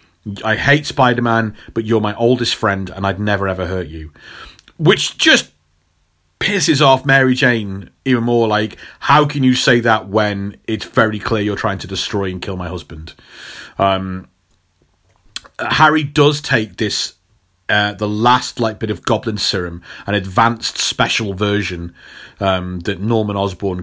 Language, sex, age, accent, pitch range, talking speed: English, male, 30-49, British, 95-115 Hz, 155 wpm